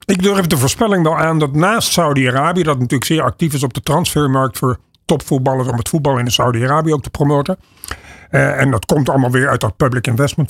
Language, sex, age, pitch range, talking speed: Dutch, male, 50-69, 130-165 Hz, 210 wpm